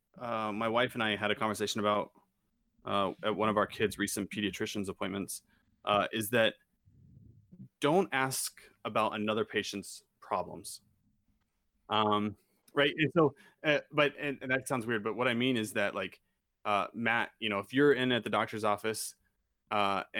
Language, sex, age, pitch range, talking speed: English, male, 30-49, 105-135 Hz, 165 wpm